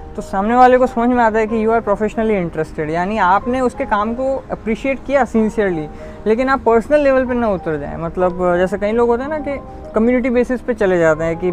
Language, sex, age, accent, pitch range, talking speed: Hindi, female, 20-39, native, 190-230 Hz, 230 wpm